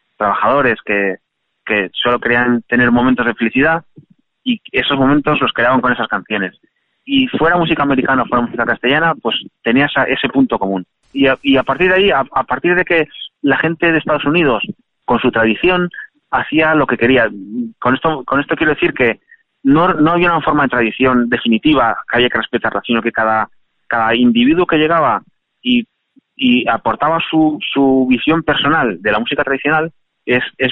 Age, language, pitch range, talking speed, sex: 30-49, Spanish, 125-175 Hz, 180 wpm, male